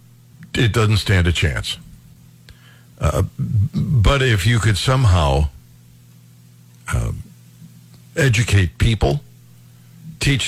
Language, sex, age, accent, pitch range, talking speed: English, male, 60-79, American, 85-140 Hz, 85 wpm